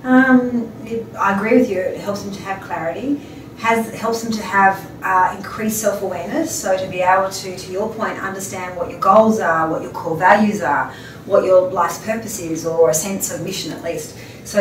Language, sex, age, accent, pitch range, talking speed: English, female, 30-49, Australian, 180-215 Hz, 205 wpm